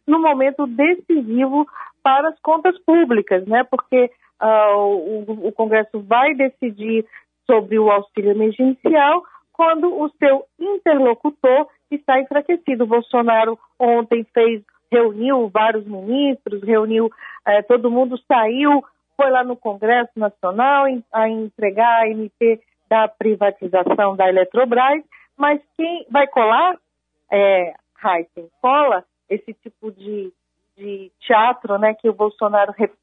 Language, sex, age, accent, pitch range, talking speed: Portuguese, female, 50-69, Brazilian, 205-260 Hz, 120 wpm